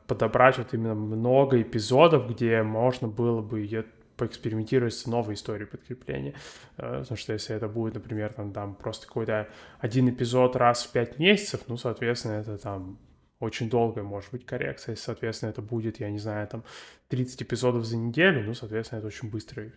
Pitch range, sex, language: 110-130 Hz, male, Russian